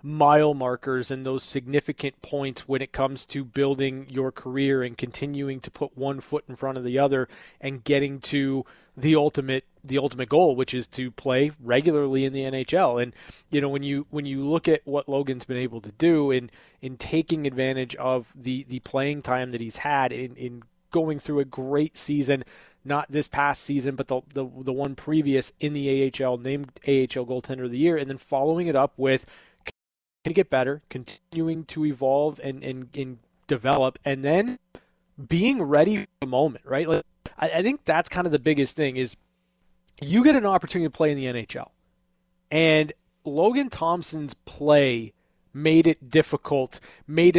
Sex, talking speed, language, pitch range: male, 185 wpm, English, 130-150 Hz